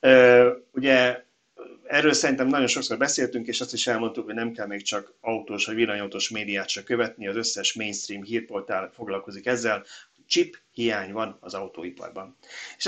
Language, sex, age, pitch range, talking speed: Hungarian, male, 30-49, 100-130 Hz, 155 wpm